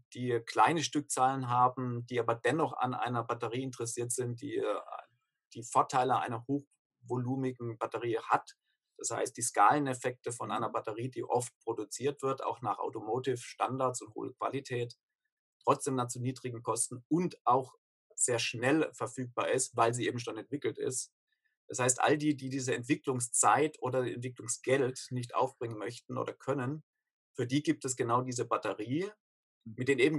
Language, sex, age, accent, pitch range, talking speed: German, male, 50-69, German, 120-150 Hz, 150 wpm